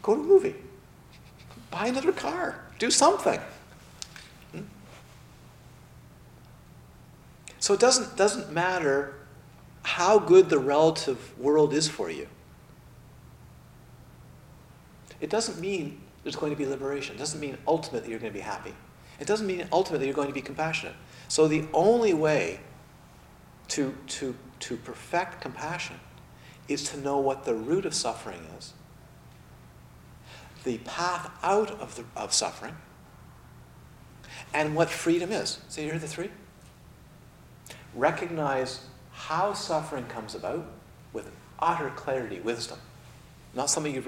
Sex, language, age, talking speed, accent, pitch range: male, English, 50-69, 130 wpm, American, 110-160 Hz